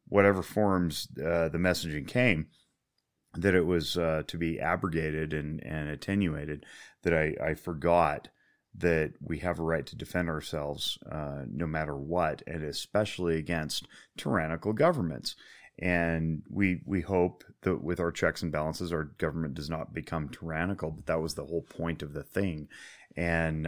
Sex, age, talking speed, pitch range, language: male, 30-49, 160 wpm, 80-90 Hz, English